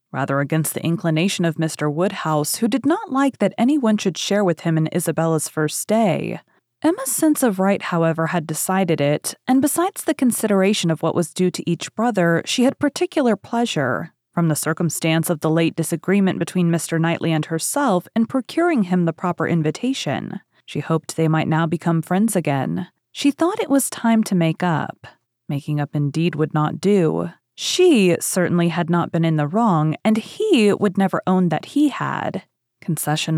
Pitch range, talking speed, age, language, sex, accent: 165-235 Hz, 180 wpm, 30-49, English, female, American